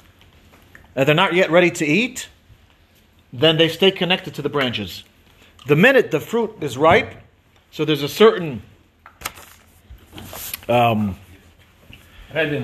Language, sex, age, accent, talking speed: English, male, 40-59, American, 120 wpm